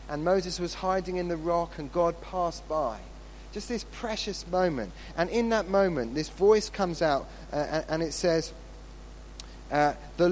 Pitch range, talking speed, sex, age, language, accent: 125-185 Hz, 170 wpm, male, 30-49, English, British